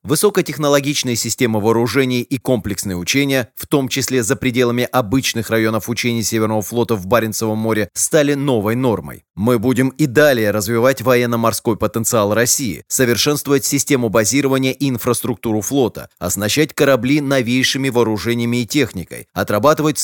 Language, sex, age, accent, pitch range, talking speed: Russian, male, 30-49, native, 110-140 Hz, 130 wpm